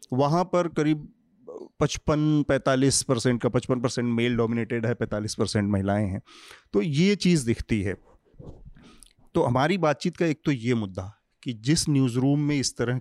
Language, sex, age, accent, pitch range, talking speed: Hindi, male, 30-49, native, 115-150 Hz, 150 wpm